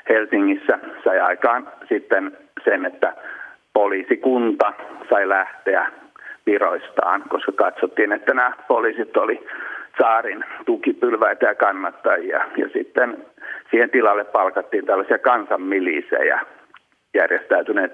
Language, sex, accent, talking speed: Finnish, male, native, 95 wpm